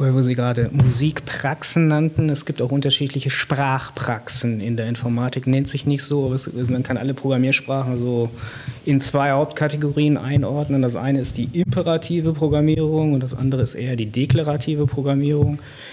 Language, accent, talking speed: German, German, 150 wpm